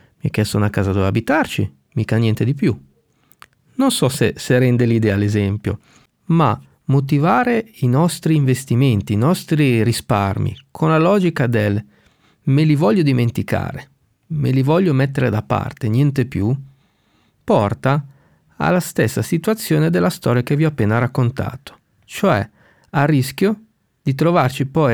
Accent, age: native, 40-59